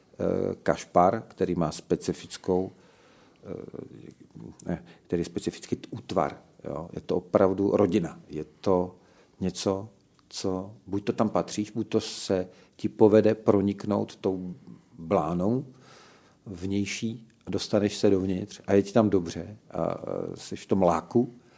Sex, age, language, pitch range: male, 40-59, Czech, 100-115 Hz